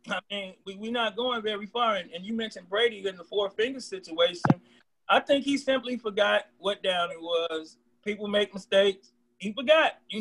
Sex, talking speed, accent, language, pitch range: male, 175 wpm, American, English, 190-225 Hz